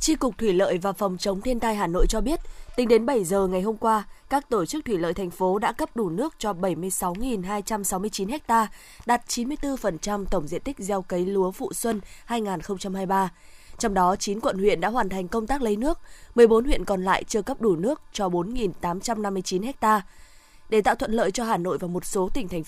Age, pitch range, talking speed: 20-39, 185-235 Hz, 210 wpm